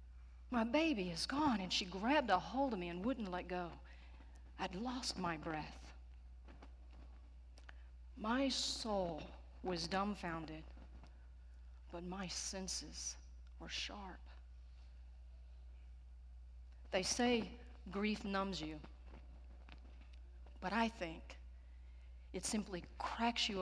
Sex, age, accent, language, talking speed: female, 40-59, American, English, 100 wpm